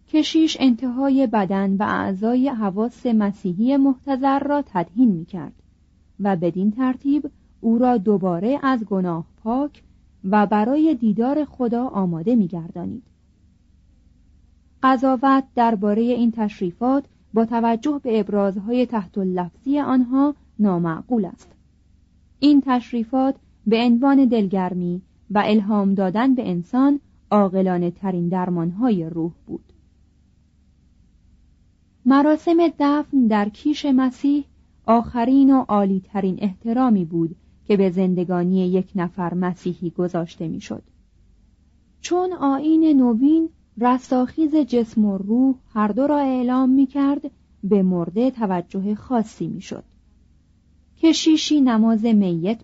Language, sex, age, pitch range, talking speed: Persian, female, 30-49, 180-265 Hz, 105 wpm